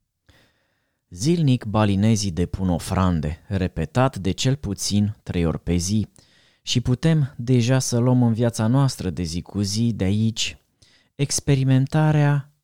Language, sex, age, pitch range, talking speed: Romanian, male, 20-39, 100-135 Hz, 130 wpm